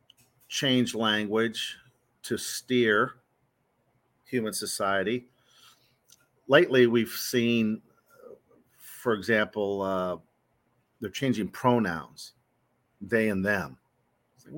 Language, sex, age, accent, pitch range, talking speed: English, male, 50-69, American, 100-120 Hz, 80 wpm